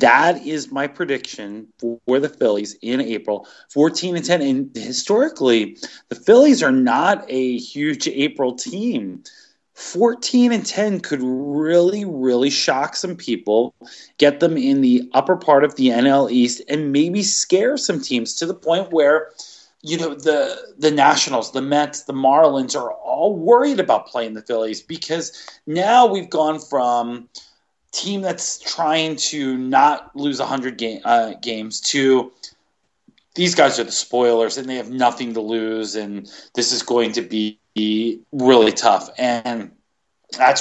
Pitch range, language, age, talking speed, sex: 125-200 Hz, English, 30-49, 155 wpm, male